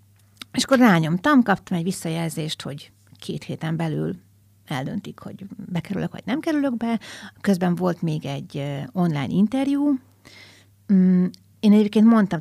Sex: female